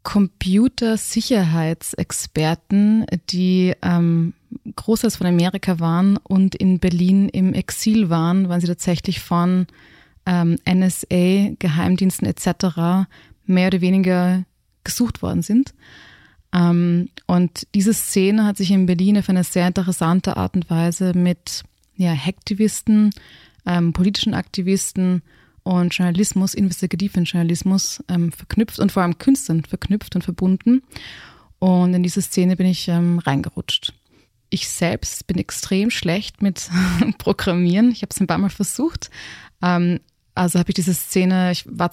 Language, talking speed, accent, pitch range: German, 125 wpm, German, 175-195 Hz